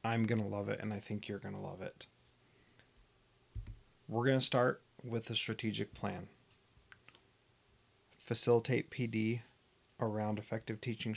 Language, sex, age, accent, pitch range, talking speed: English, male, 30-49, American, 105-120 Hz, 140 wpm